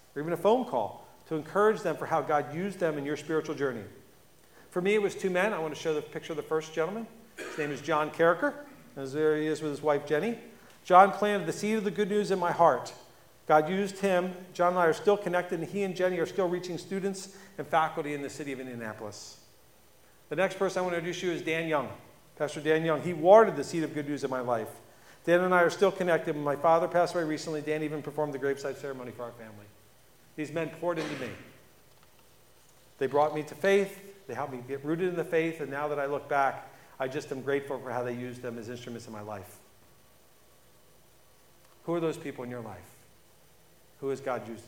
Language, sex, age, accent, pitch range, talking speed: English, male, 40-59, American, 130-180 Hz, 230 wpm